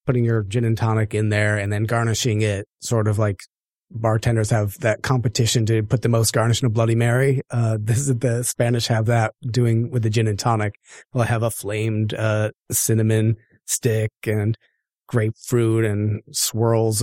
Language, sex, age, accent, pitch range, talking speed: English, male, 30-49, American, 110-125 Hz, 185 wpm